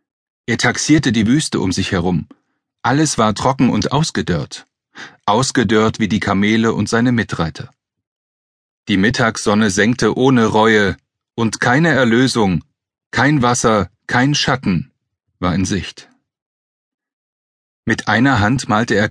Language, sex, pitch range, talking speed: German, male, 100-135 Hz, 120 wpm